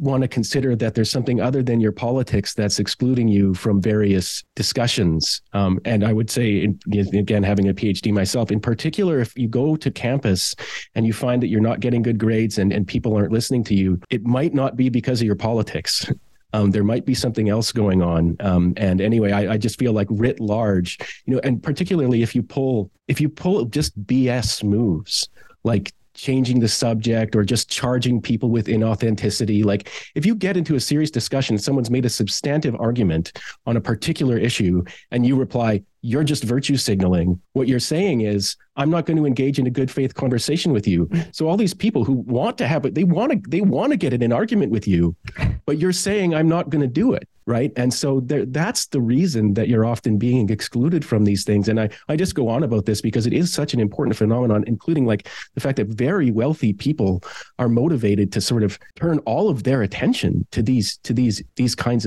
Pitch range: 105-135 Hz